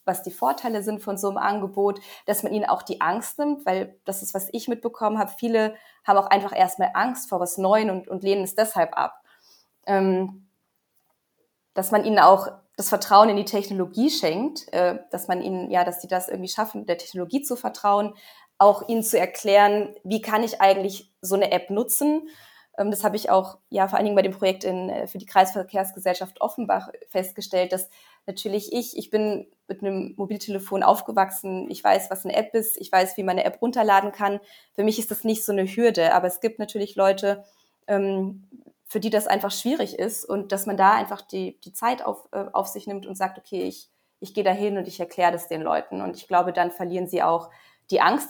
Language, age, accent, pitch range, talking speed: German, 20-39, German, 185-210 Hz, 205 wpm